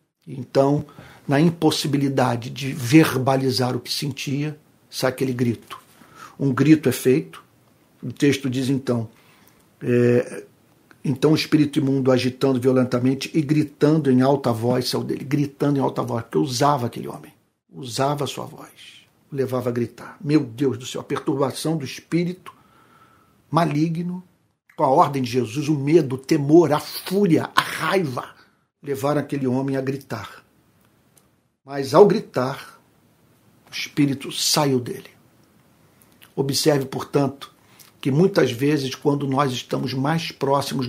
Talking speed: 135 wpm